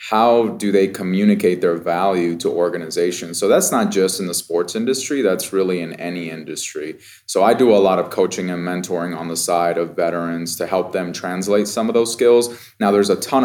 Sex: male